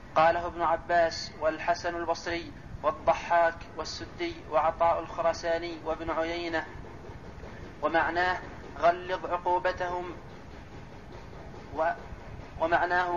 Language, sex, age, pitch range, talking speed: Arabic, male, 30-49, 165-180 Hz, 55 wpm